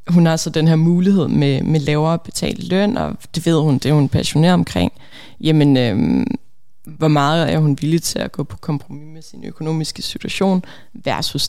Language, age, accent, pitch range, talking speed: Danish, 20-39, native, 145-170 Hz, 195 wpm